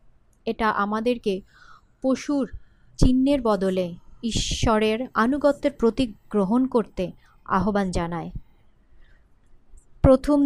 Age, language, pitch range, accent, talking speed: 30-49, Bengali, 205-270 Hz, native, 75 wpm